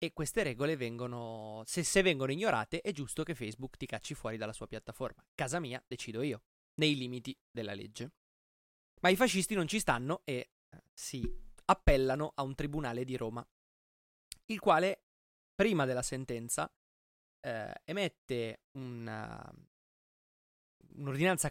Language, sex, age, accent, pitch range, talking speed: Italian, male, 20-39, native, 120-165 Hz, 135 wpm